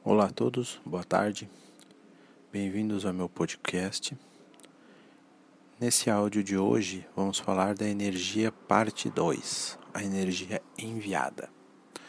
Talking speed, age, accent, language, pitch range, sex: 110 wpm, 40-59, Brazilian, Portuguese, 90-105 Hz, male